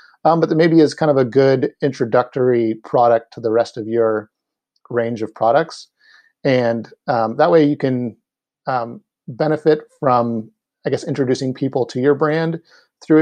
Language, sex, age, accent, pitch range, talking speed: English, male, 40-59, American, 115-145 Hz, 165 wpm